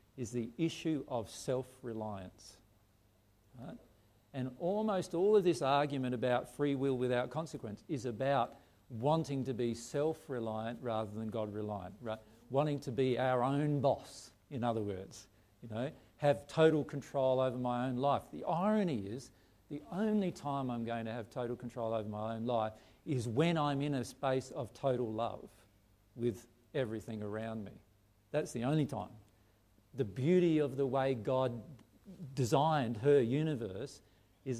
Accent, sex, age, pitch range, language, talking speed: Australian, male, 50-69, 110-140 Hz, English, 155 wpm